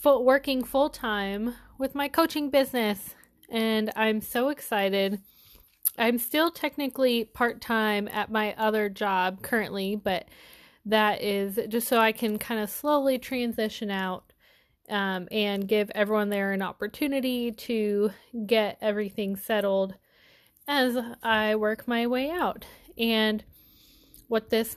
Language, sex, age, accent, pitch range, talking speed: English, female, 10-29, American, 210-265 Hz, 125 wpm